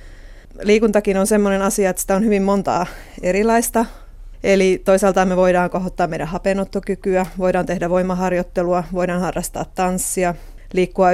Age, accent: 30-49, native